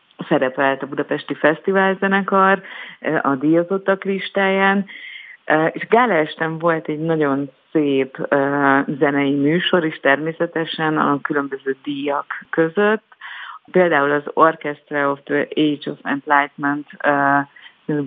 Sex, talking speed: female, 100 wpm